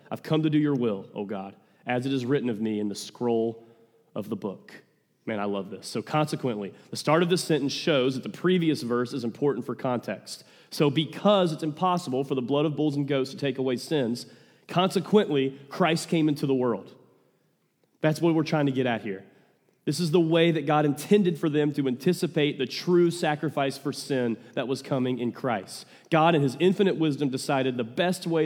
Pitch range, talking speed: 125-165 Hz, 210 wpm